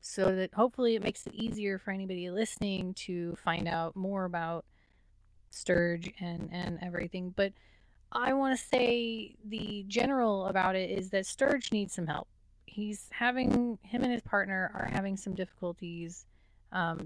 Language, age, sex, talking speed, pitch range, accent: English, 30-49, female, 160 wpm, 175-210 Hz, American